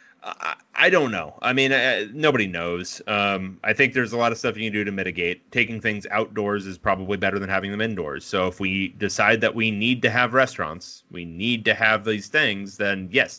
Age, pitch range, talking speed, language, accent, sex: 30-49, 100-125 Hz, 225 wpm, English, American, male